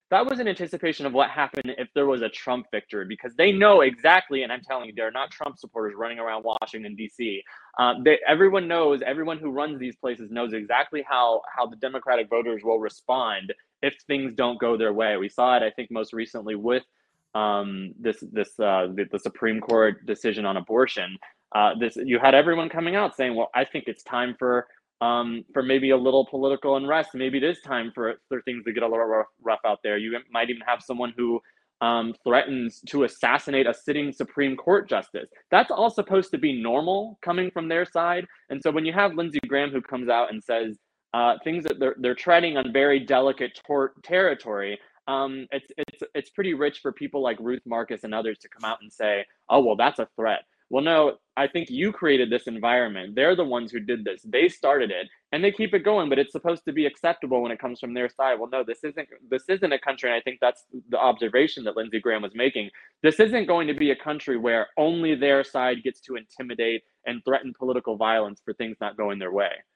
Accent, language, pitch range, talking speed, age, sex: American, English, 115-150 Hz, 220 wpm, 20-39, male